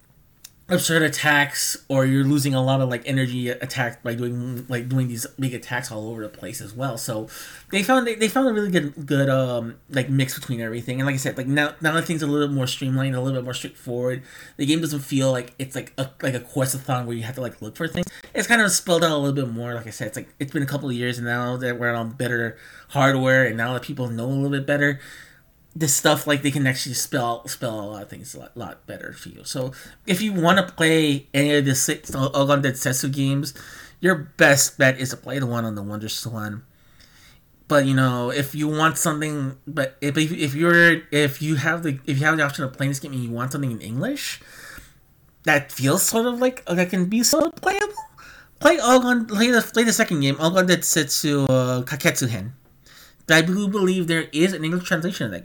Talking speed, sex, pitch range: 245 wpm, male, 125-160 Hz